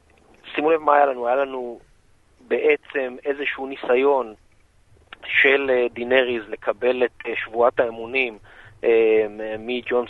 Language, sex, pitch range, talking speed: Hebrew, male, 115-190 Hz, 100 wpm